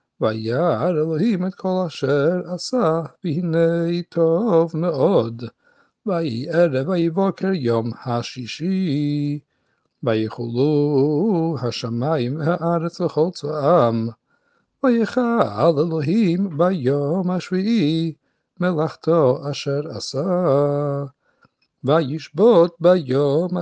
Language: Hebrew